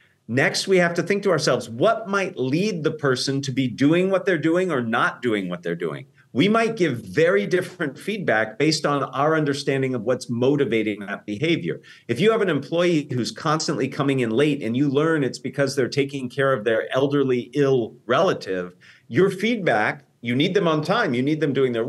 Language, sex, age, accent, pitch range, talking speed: English, male, 50-69, American, 125-170 Hz, 205 wpm